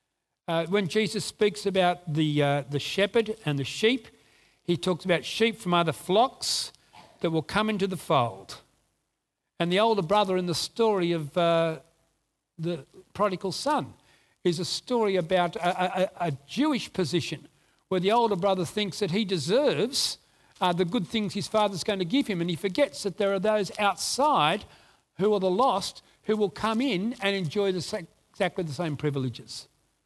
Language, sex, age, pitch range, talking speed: English, male, 60-79, 175-220 Hz, 175 wpm